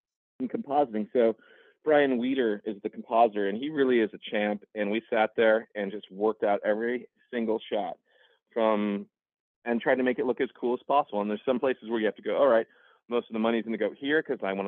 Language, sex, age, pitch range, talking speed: English, male, 30-49, 105-125 Hz, 235 wpm